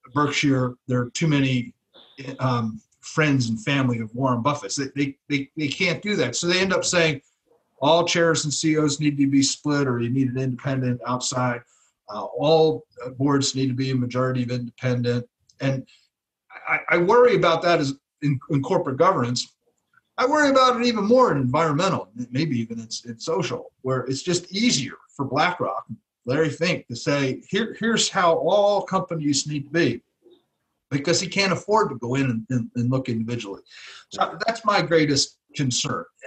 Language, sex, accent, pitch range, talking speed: English, male, American, 125-165 Hz, 180 wpm